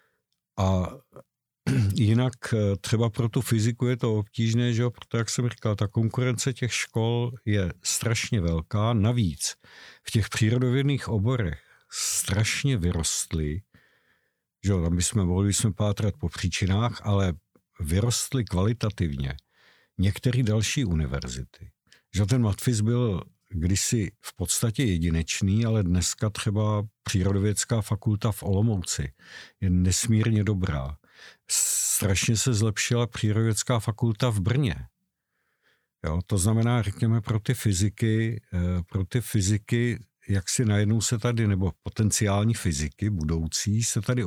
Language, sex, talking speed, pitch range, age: Czech, male, 120 wpm, 95-115 Hz, 50-69